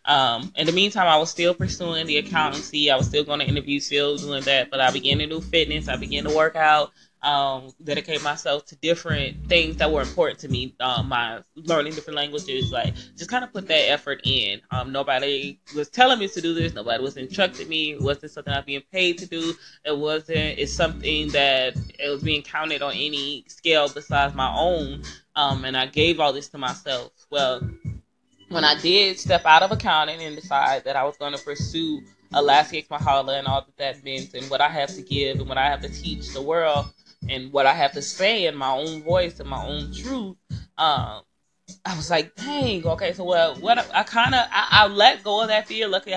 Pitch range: 140-170 Hz